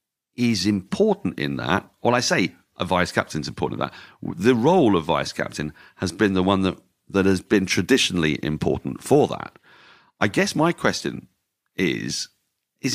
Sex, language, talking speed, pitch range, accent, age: male, English, 165 wpm, 85-115 Hz, British, 40-59